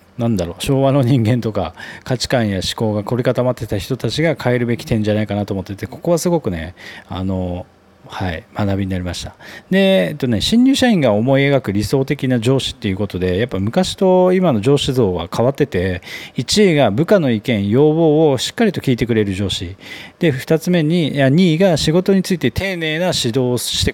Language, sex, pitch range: Japanese, male, 100-155 Hz